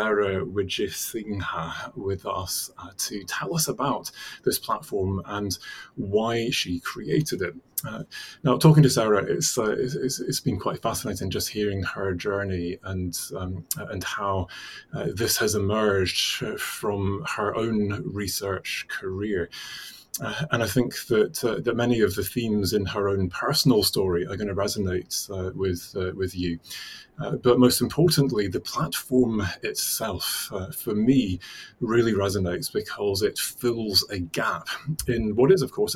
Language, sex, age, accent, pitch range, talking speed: English, male, 30-49, British, 95-120 Hz, 155 wpm